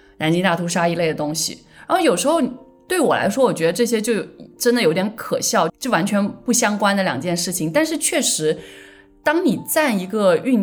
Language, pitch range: Chinese, 165-245 Hz